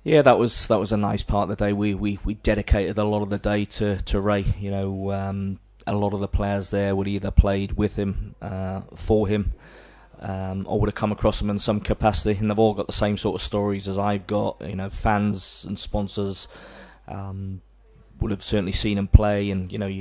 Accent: British